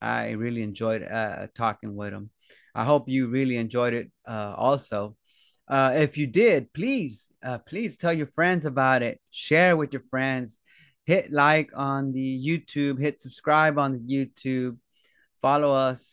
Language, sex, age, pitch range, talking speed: English, male, 30-49, 125-160 Hz, 160 wpm